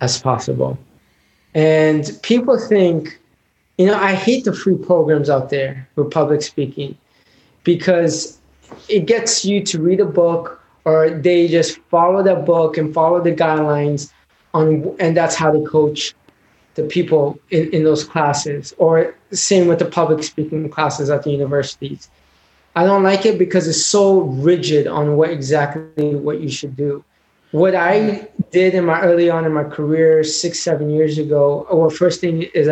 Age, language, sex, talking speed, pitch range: 20-39, English, male, 165 wpm, 150-175 Hz